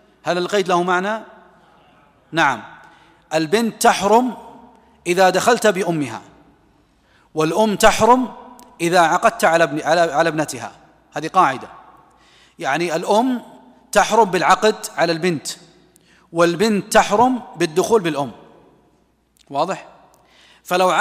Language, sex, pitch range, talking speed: Arabic, male, 165-210 Hz, 90 wpm